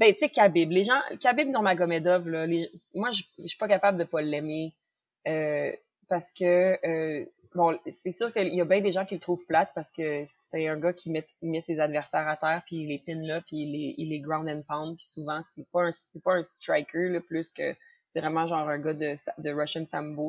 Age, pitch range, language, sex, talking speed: 20-39, 155-185 Hz, French, female, 235 wpm